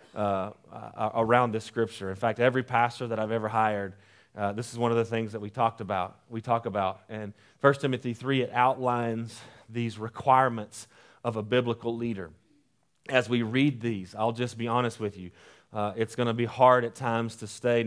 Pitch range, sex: 110-135 Hz, male